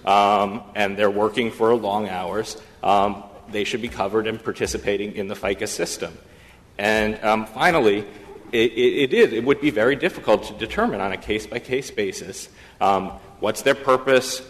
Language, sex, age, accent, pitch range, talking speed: English, male, 40-59, American, 100-115 Hz, 155 wpm